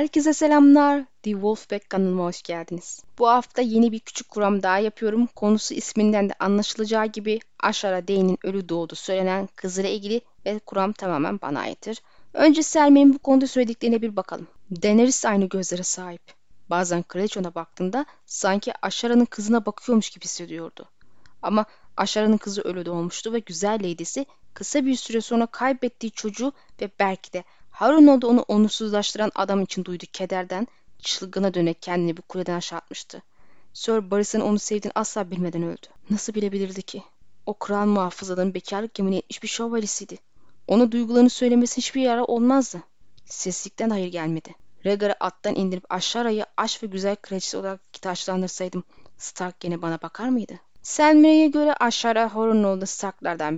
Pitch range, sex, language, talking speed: 185-235 Hz, female, Turkish, 145 wpm